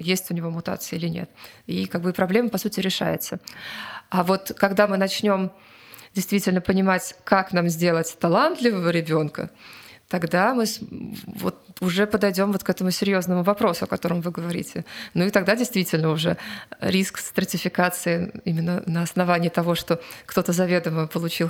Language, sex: Russian, female